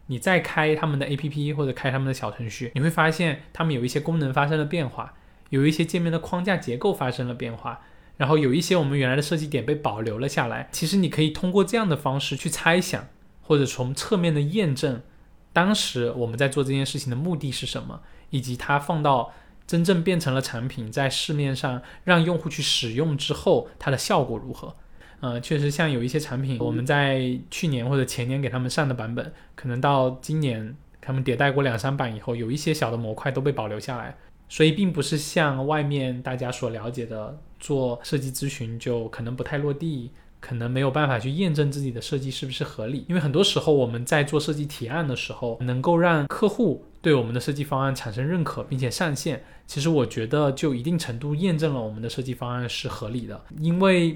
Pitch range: 125-155 Hz